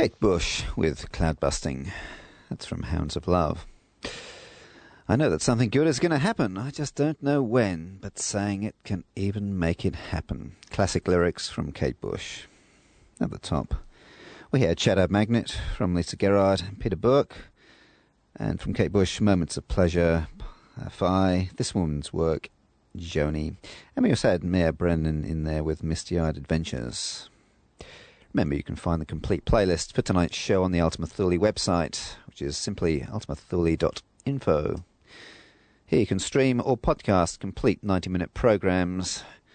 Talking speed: 155 wpm